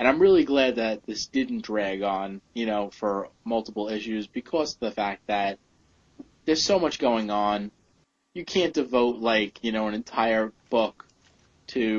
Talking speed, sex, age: 170 wpm, male, 20-39